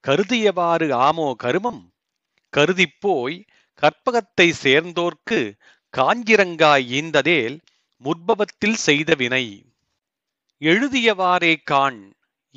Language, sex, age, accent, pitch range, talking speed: Tamil, male, 40-59, native, 145-200 Hz, 60 wpm